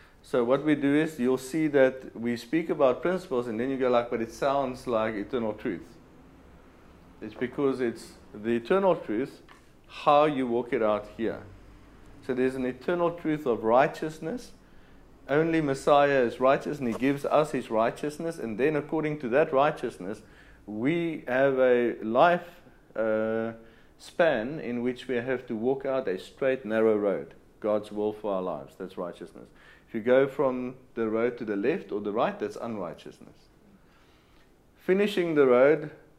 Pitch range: 105-140 Hz